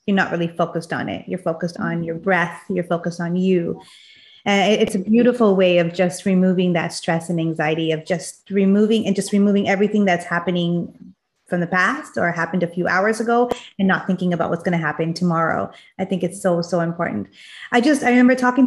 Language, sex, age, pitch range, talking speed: English, female, 30-49, 180-205 Hz, 210 wpm